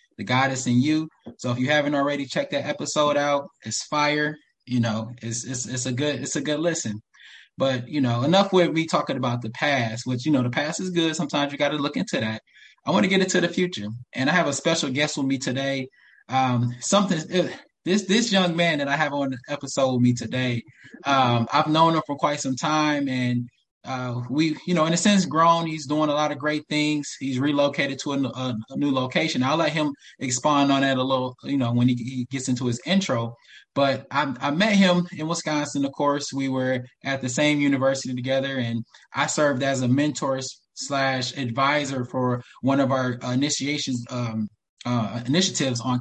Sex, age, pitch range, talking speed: male, 20-39, 125-150 Hz, 210 wpm